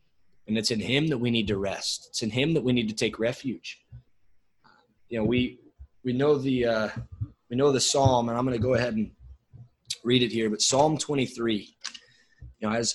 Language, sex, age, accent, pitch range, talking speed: English, male, 20-39, American, 105-130 Hz, 210 wpm